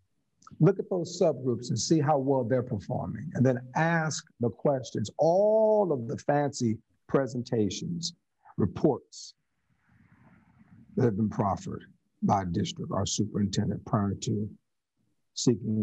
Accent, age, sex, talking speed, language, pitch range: American, 50-69, male, 120 wpm, English, 115-185 Hz